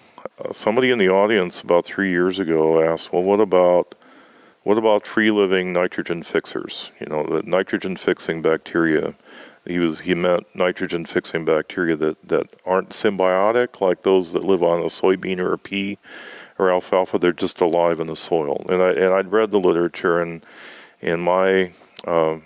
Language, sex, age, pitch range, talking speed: English, male, 40-59, 85-100 Hz, 170 wpm